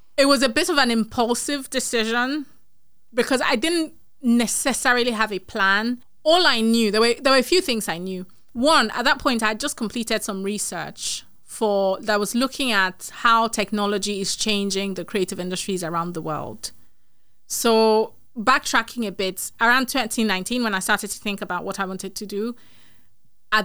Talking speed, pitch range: 180 wpm, 195-235 Hz